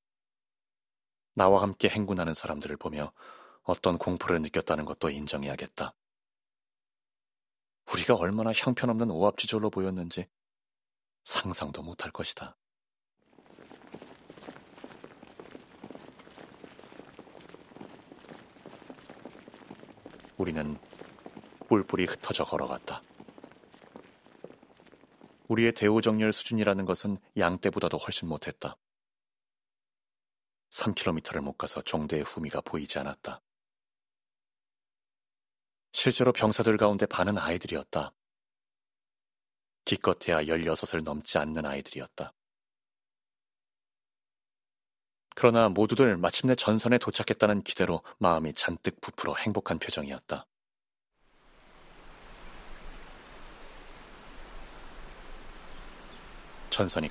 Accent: native